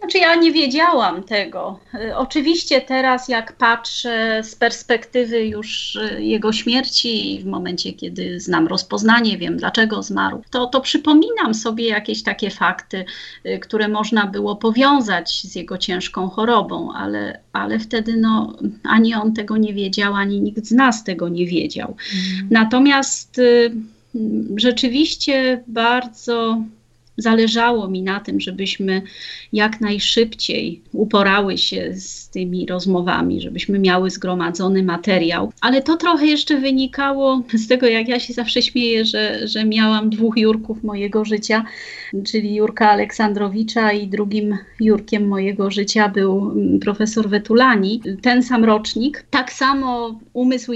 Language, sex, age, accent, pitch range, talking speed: Polish, female, 30-49, native, 200-245 Hz, 130 wpm